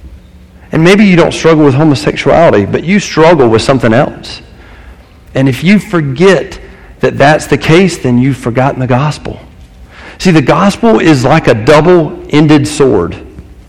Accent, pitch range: American, 110-165 Hz